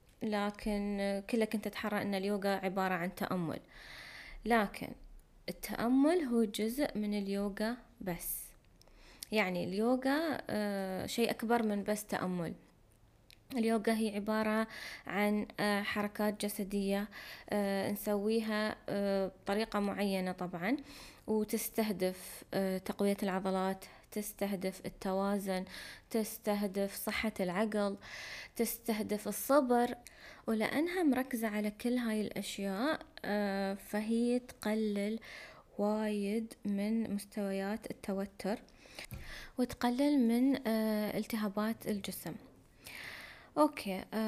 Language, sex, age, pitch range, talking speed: Arabic, female, 20-39, 195-225 Hz, 80 wpm